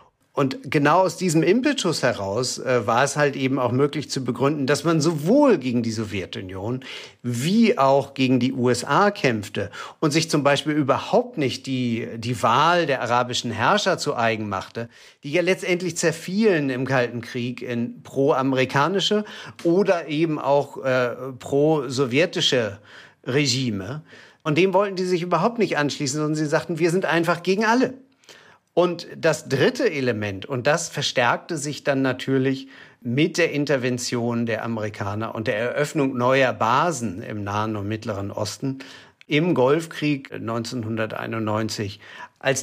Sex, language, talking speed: male, German, 145 wpm